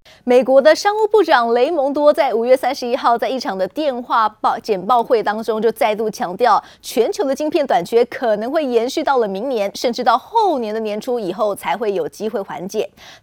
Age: 20-39